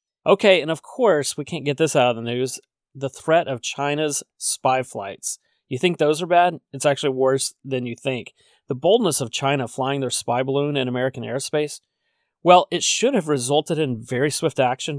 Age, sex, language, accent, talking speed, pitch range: 30-49, male, English, American, 195 wpm, 125-150 Hz